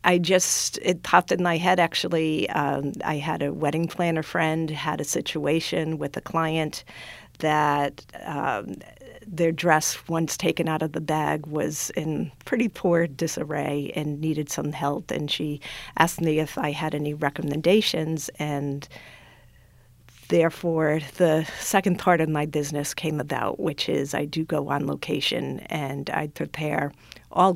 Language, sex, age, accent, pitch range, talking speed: English, female, 50-69, American, 150-165 Hz, 150 wpm